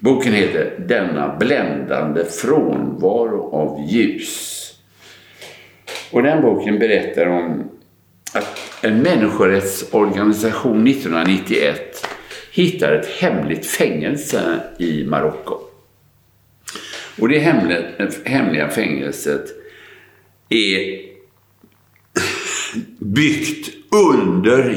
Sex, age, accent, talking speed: male, 60-79, Norwegian, 70 wpm